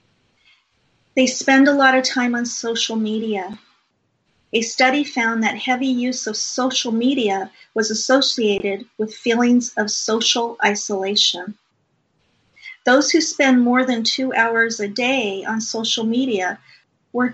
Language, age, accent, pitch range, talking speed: English, 40-59, American, 210-255 Hz, 130 wpm